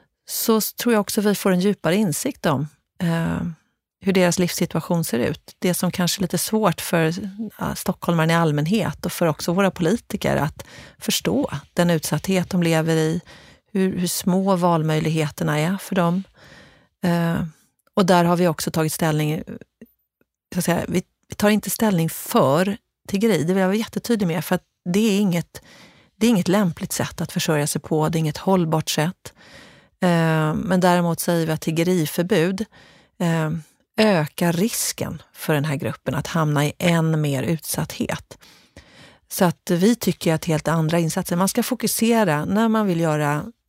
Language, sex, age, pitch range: Swedish, female, 40-59, 155-195 Hz